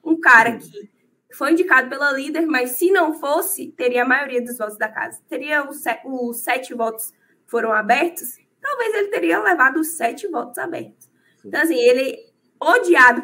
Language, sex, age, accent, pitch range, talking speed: Portuguese, female, 20-39, Brazilian, 245-330 Hz, 170 wpm